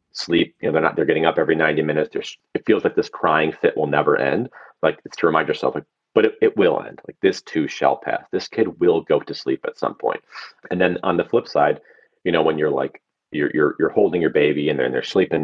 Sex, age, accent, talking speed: male, 30-49, American, 255 wpm